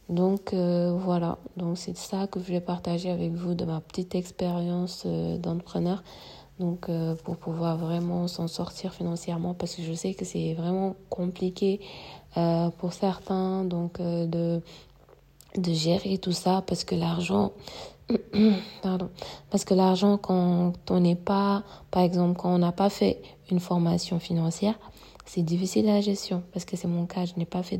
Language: French